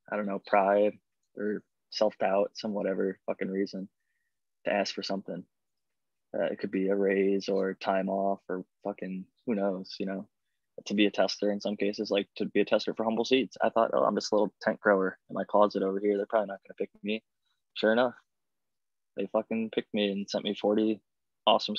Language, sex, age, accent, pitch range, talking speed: English, male, 20-39, American, 100-110 Hz, 210 wpm